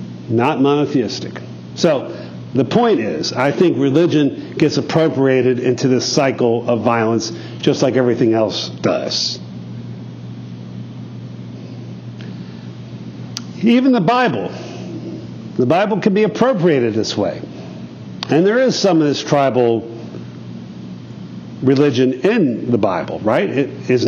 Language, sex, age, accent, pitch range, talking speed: English, male, 50-69, American, 100-165 Hz, 110 wpm